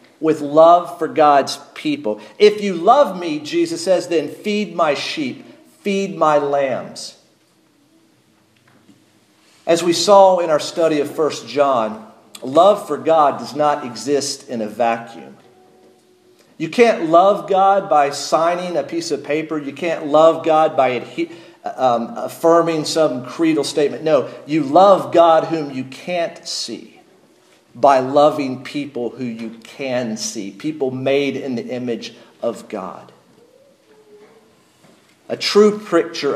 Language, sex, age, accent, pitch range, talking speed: English, male, 50-69, American, 140-200 Hz, 135 wpm